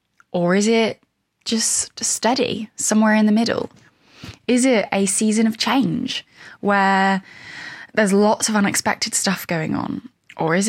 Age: 10-29